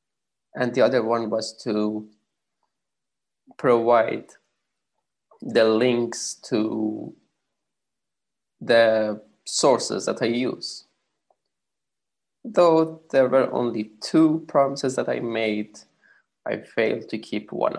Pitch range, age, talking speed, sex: 110-135 Hz, 20-39, 100 wpm, male